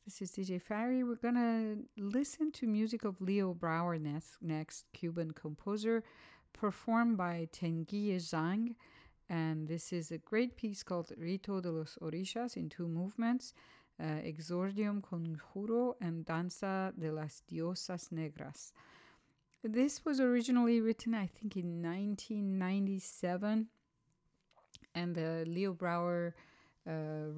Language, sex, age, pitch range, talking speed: English, female, 50-69, 160-205 Hz, 125 wpm